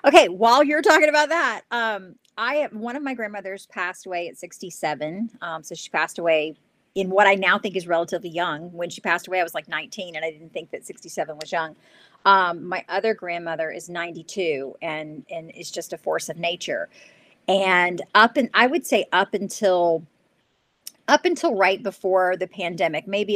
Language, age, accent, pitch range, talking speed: English, 40-59, American, 170-220 Hz, 190 wpm